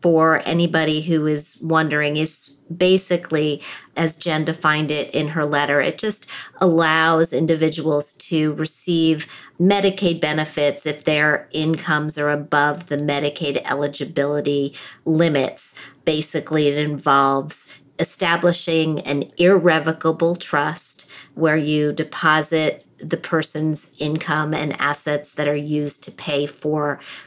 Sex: female